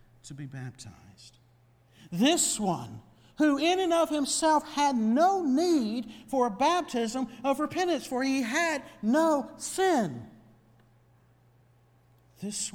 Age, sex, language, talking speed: 60-79, male, English, 115 wpm